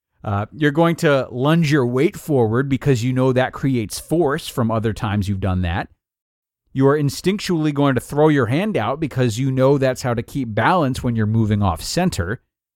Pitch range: 110-155 Hz